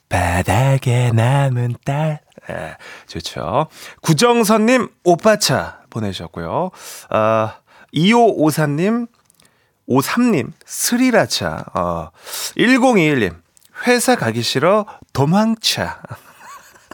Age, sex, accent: 30-49, male, native